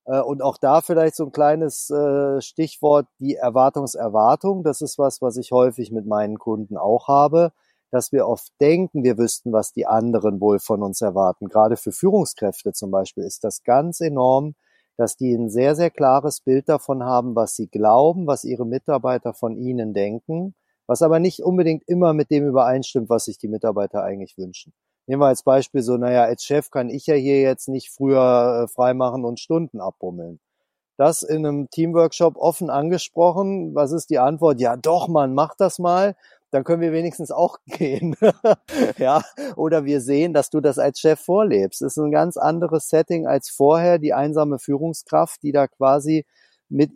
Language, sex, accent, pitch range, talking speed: English, male, German, 125-160 Hz, 180 wpm